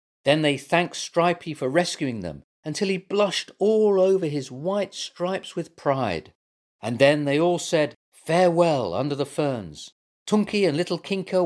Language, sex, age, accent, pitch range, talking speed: English, male, 40-59, British, 140-195 Hz, 155 wpm